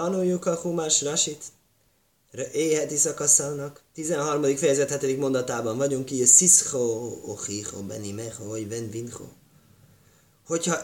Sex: male